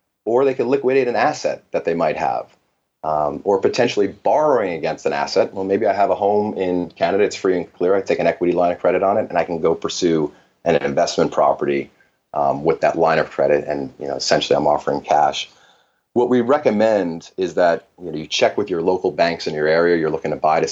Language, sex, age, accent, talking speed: English, male, 30-49, American, 230 wpm